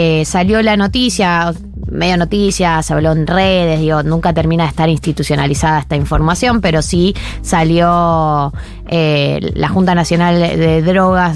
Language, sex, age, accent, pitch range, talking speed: Spanish, female, 20-39, Argentinian, 160-210 Hz, 145 wpm